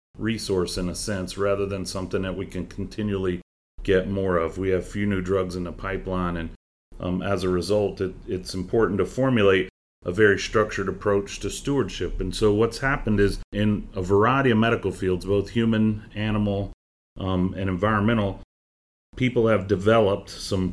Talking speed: 170 wpm